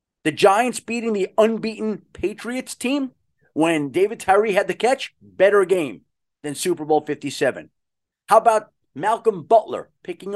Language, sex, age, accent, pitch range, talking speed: English, male, 40-59, American, 165-245 Hz, 140 wpm